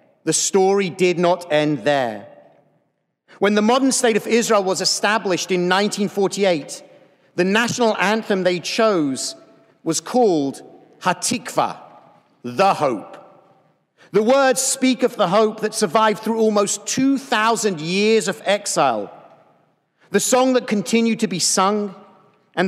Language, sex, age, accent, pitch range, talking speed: English, male, 50-69, British, 175-220 Hz, 125 wpm